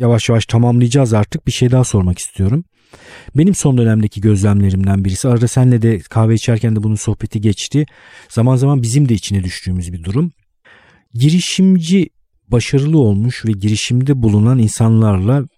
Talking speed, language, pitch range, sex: 145 wpm, Turkish, 105-140 Hz, male